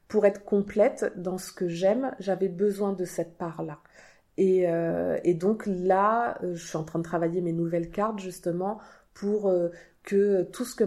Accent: French